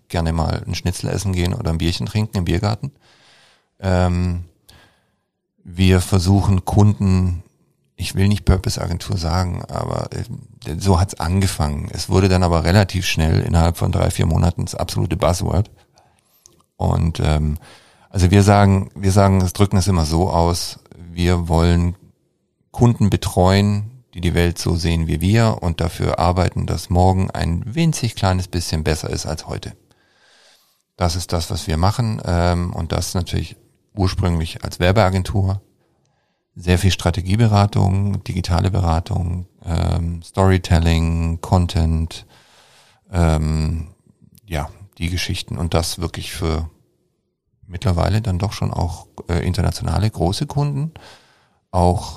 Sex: male